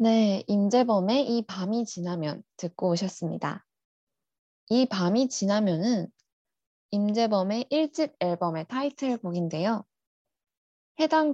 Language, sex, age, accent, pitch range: Korean, female, 20-39, native, 180-245 Hz